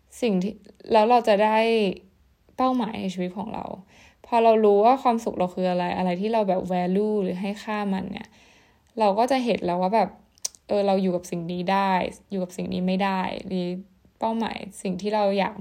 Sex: female